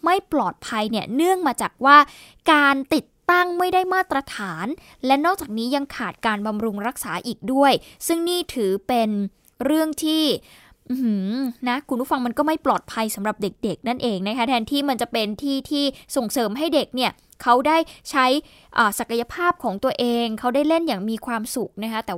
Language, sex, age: Thai, female, 10-29